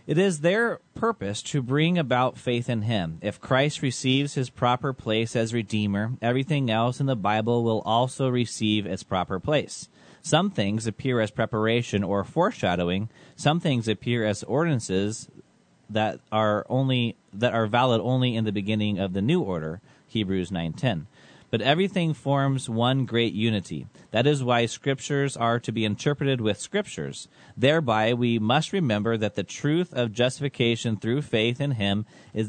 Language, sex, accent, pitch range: English, male, American, 110-135 Hz